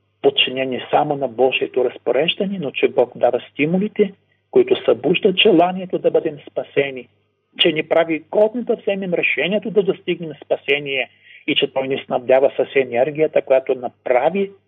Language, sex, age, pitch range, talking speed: Bulgarian, male, 50-69, 130-195 Hz, 145 wpm